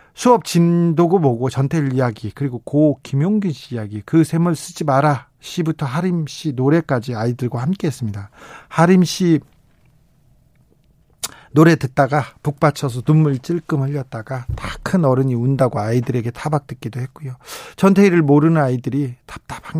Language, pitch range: Korean, 125-165 Hz